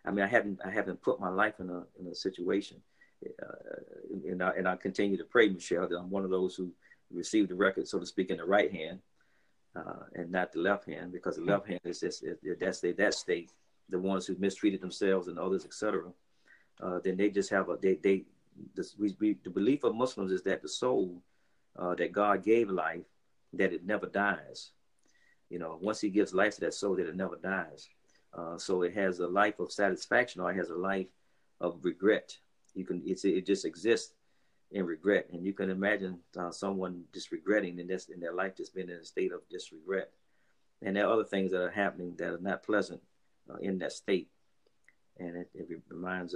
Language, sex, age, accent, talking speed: English, male, 50-69, American, 215 wpm